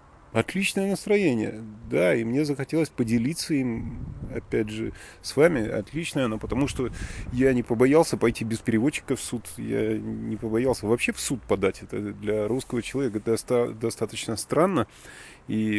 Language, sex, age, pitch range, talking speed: Russian, male, 30-49, 110-135 Hz, 145 wpm